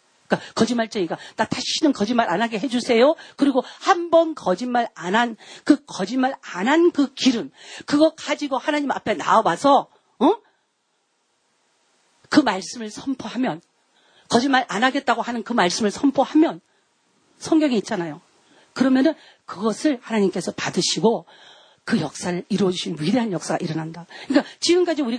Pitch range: 195-290 Hz